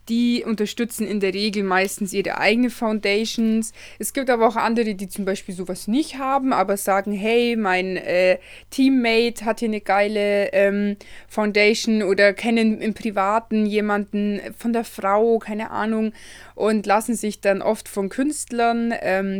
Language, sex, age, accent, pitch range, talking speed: German, female, 20-39, German, 195-235 Hz, 155 wpm